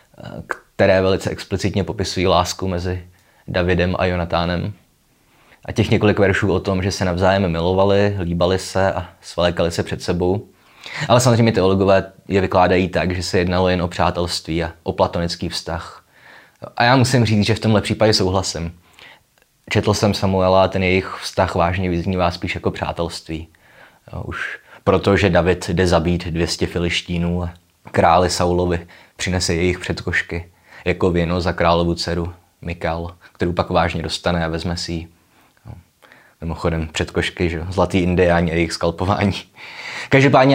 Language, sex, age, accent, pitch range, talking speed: Czech, male, 20-39, native, 85-95 Hz, 145 wpm